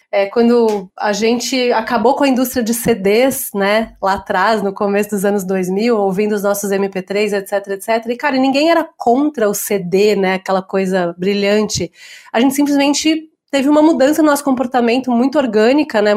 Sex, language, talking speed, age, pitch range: female, Portuguese, 170 wpm, 30-49, 210-255 Hz